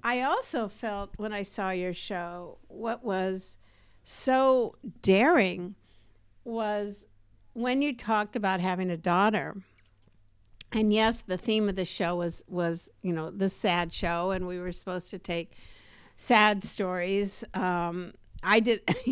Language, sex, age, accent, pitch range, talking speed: English, female, 50-69, American, 180-240 Hz, 140 wpm